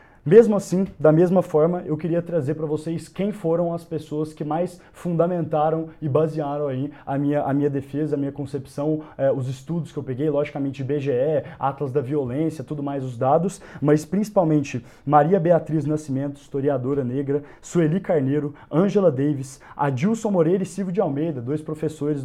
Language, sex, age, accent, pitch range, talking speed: Portuguese, male, 20-39, Brazilian, 145-175 Hz, 165 wpm